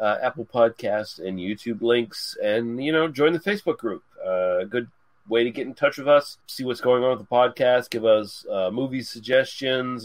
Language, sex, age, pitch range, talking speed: English, male, 30-49, 115-145 Hz, 210 wpm